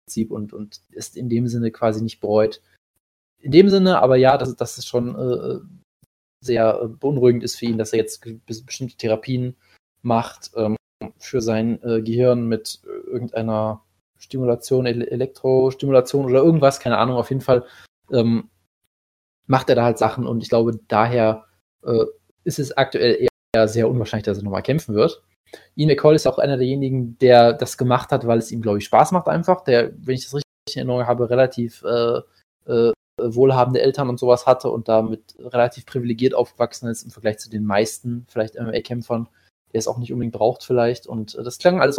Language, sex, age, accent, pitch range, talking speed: German, male, 20-39, German, 110-130 Hz, 180 wpm